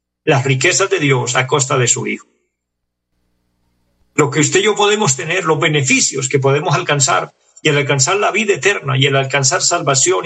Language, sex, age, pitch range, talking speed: Spanish, male, 50-69, 110-150 Hz, 185 wpm